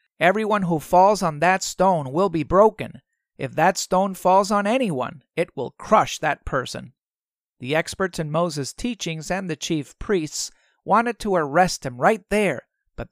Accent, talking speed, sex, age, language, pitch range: American, 165 wpm, male, 40-59, English, 150-195 Hz